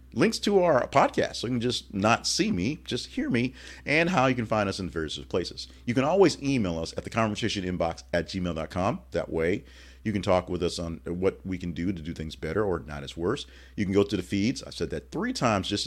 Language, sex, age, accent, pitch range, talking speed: English, male, 40-59, American, 80-115 Hz, 250 wpm